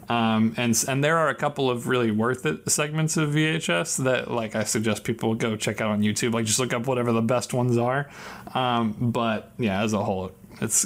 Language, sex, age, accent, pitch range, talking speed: English, male, 30-49, American, 115-135 Hz, 220 wpm